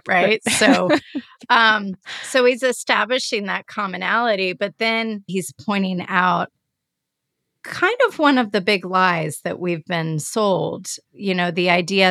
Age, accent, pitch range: 30-49, American, 175-230 Hz